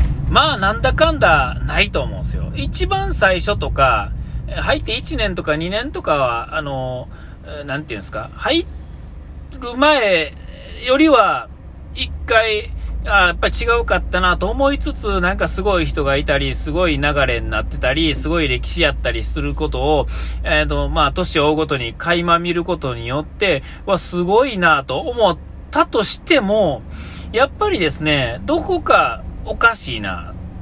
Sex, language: male, Japanese